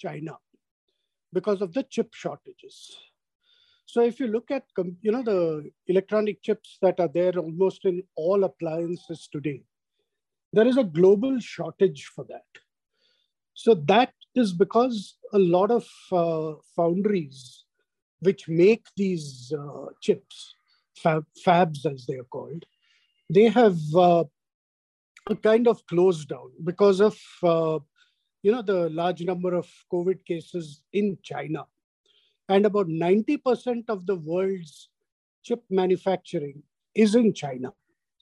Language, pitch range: English, 170-225 Hz